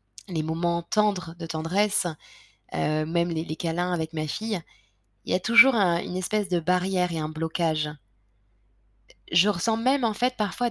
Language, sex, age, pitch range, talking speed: French, female, 20-39, 160-195 Hz, 170 wpm